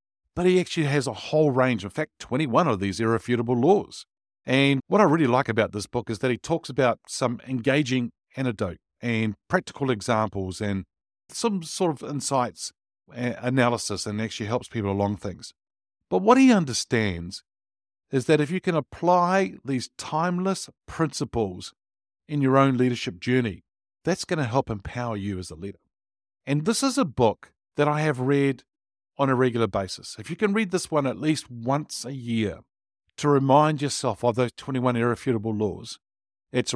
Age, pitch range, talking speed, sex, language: 50-69, 110-145 Hz, 175 wpm, male, English